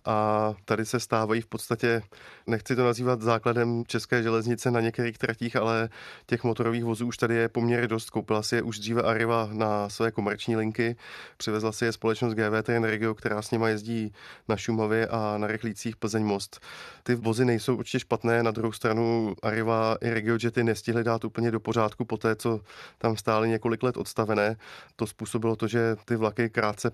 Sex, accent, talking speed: male, native, 185 wpm